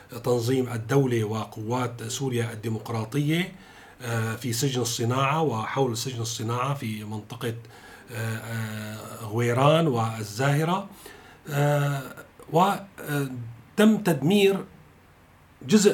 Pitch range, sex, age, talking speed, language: 115-145 Hz, male, 40-59, 70 wpm, Arabic